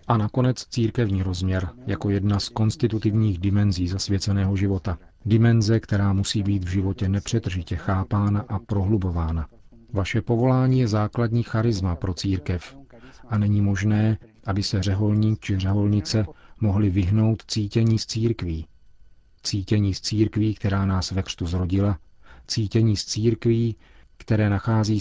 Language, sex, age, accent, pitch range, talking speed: Czech, male, 40-59, native, 95-110 Hz, 130 wpm